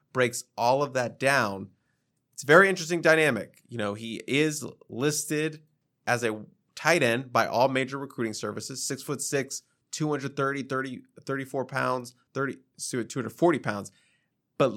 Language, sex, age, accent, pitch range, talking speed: English, male, 20-39, American, 115-140 Hz, 140 wpm